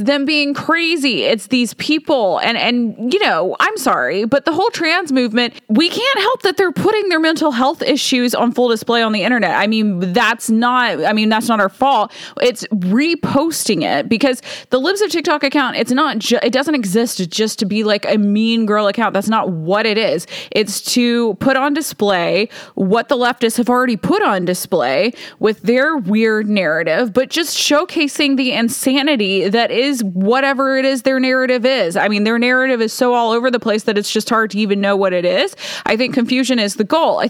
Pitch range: 205-270 Hz